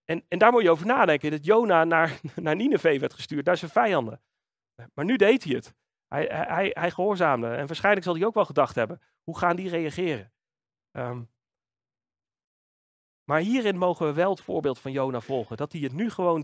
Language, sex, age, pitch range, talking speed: Dutch, male, 40-59, 150-195 Hz, 190 wpm